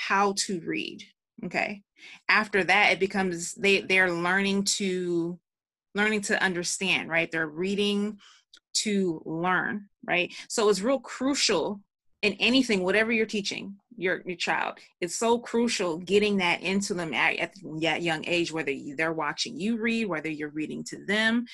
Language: English